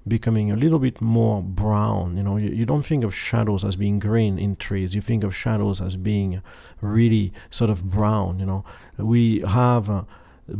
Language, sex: English, male